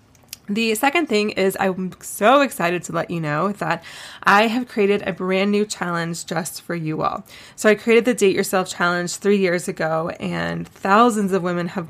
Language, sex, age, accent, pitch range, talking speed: English, female, 20-39, American, 170-200 Hz, 190 wpm